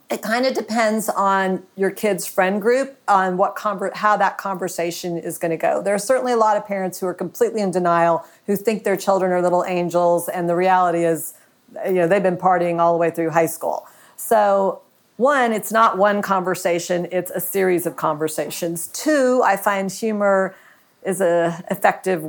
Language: English